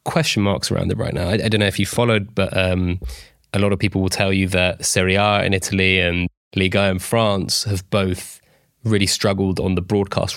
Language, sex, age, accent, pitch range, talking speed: English, male, 20-39, British, 95-115 Hz, 225 wpm